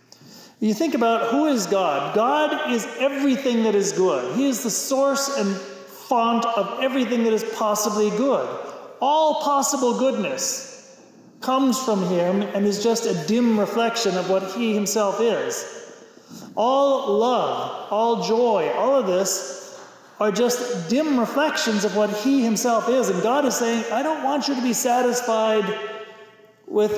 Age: 40-59